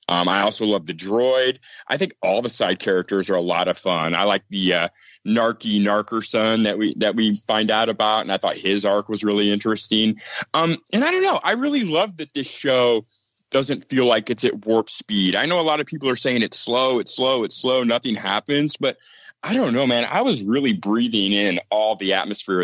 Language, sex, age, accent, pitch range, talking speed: English, male, 30-49, American, 95-125 Hz, 225 wpm